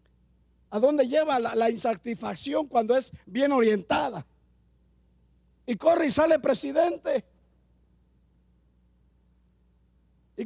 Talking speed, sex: 90 wpm, male